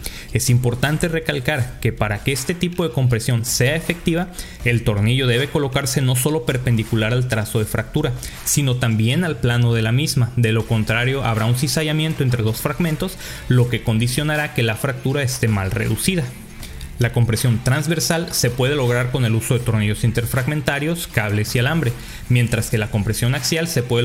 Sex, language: male, Spanish